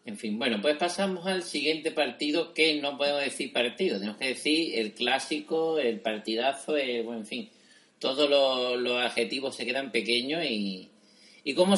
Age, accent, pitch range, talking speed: 40-59, Spanish, 115-145 Hz, 175 wpm